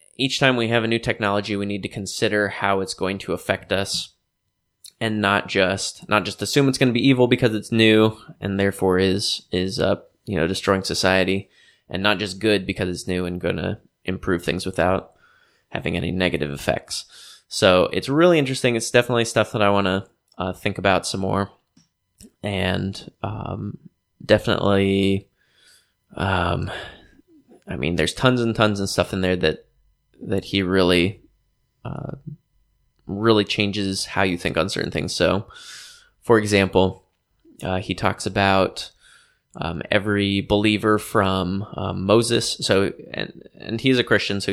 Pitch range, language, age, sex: 95-110 Hz, English, 20-39, male